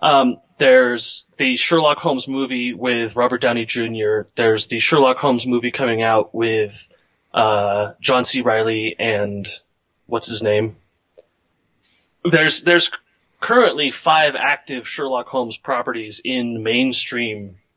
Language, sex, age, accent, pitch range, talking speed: English, male, 30-49, American, 85-130 Hz, 120 wpm